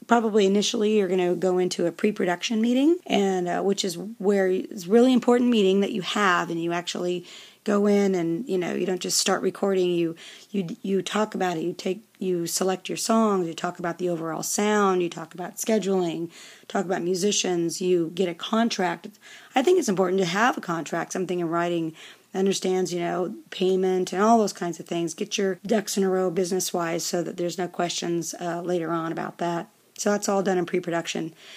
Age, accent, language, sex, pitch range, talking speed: 40-59, American, English, female, 175-205 Hz, 205 wpm